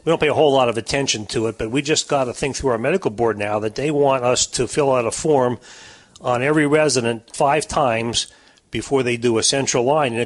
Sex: male